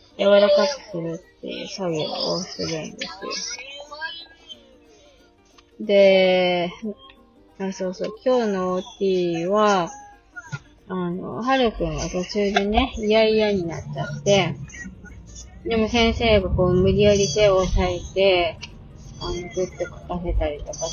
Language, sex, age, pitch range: Japanese, female, 20-39, 170-215 Hz